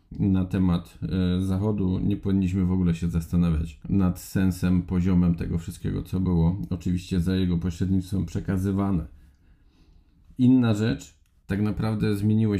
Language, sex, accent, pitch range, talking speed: Polish, male, native, 90-105 Hz, 125 wpm